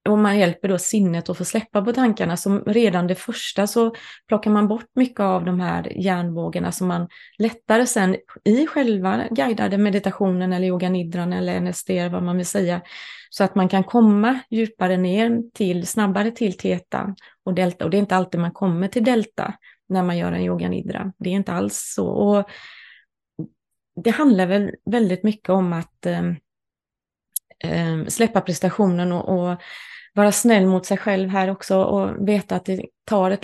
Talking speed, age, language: 175 wpm, 30-49, Swedish